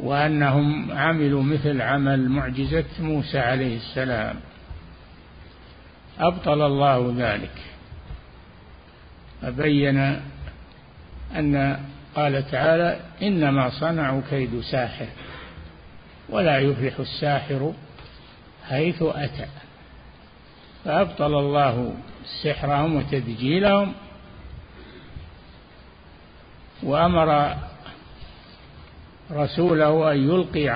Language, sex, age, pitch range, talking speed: Arabic, male, 50-69, 110-155 Hz, 60 wpm